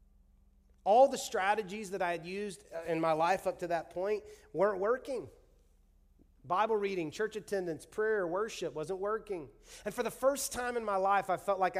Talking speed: 180 wpm